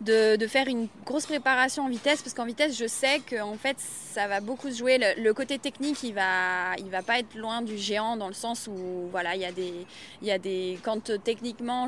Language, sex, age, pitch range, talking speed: French, female, 20-39, 200-240 Hz, 240 wpm